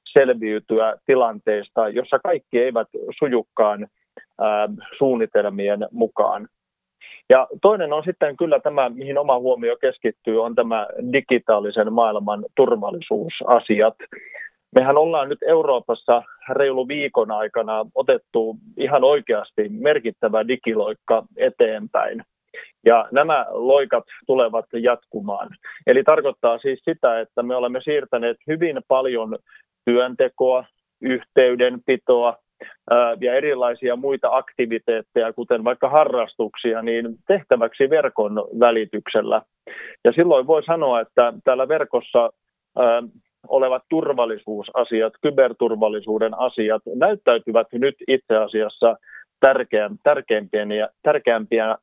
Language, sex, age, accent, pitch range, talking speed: Finnish, male, 30-49, native, 110-155 Hz, 95 wpm